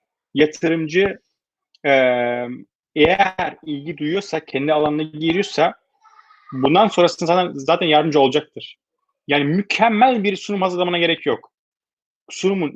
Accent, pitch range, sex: native, 155-200 Hz, male